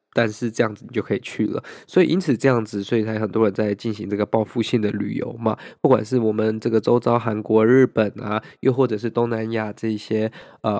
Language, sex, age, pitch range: Chinese, male, 20-39, 110-135 Hz